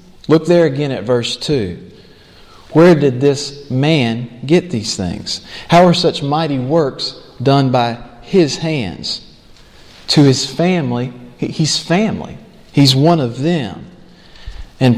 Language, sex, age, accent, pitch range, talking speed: English, male, 40-59, American, 120-155 Hz, 130 wpm